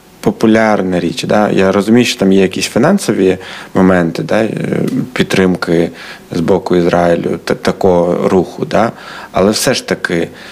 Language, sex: Ukrainian, male